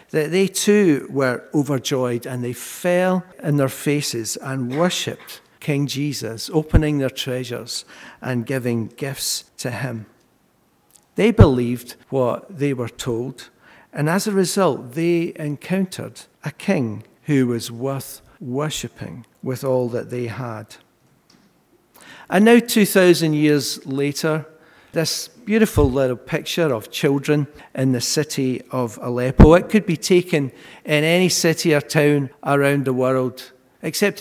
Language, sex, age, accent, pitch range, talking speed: English, male, 60-79, British, 125-165 Hz, 130 wpm